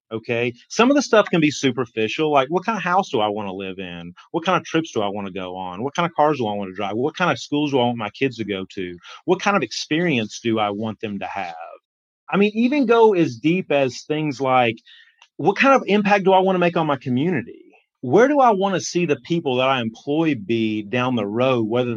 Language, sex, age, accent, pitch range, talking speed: English, male, 30-49, American, 115-160 Hz, 265 wpm